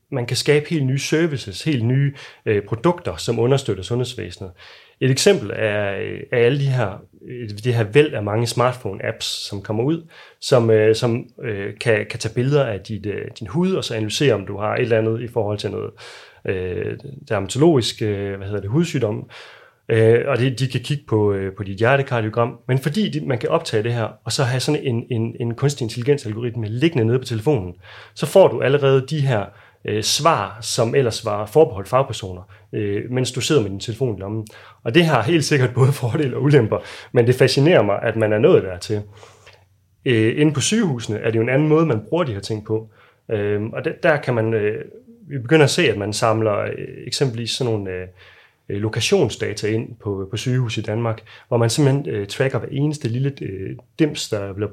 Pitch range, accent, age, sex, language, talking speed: 110-140 Hz, native, 30-49, male, Danish, 205 wpm